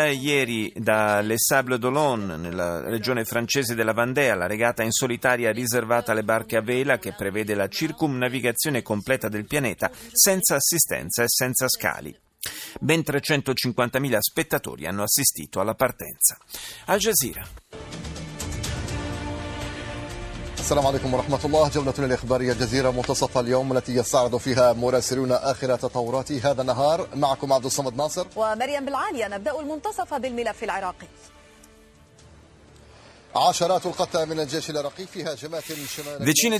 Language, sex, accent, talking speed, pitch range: Italian, male, native, 70 wpm, 115-150 Hz